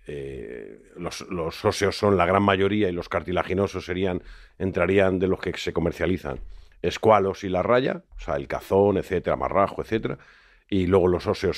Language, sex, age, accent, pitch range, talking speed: Spanish, male, 50-69, Spanish, 95-120 Hz, 165 wpm